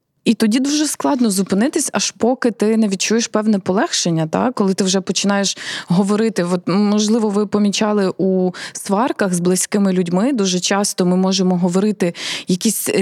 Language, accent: Ukrainian, native